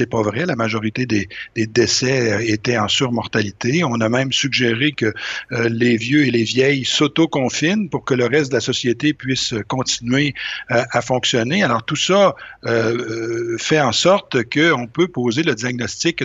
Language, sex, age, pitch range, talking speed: French, male, 50-69, 120-160 Hz, 175 wpm